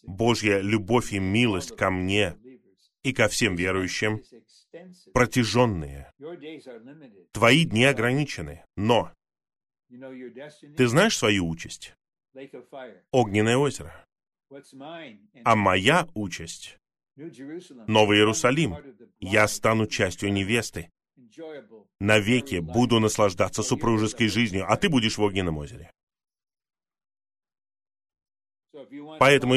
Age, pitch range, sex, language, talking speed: 30-49, 100-130 Hz, male, Russian, 85 wpm